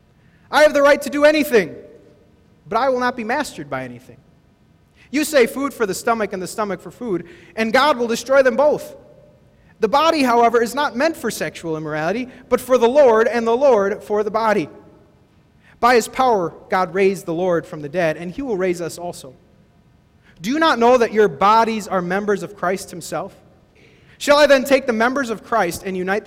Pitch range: 170-240 Hz